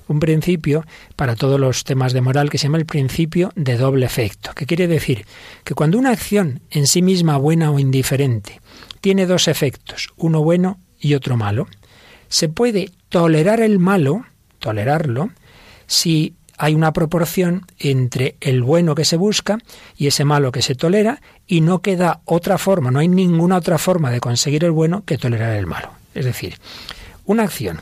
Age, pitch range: 40-59, 125-170 Hz